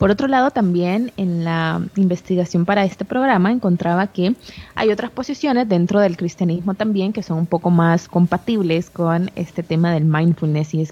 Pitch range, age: 170-215 Hz, 20-39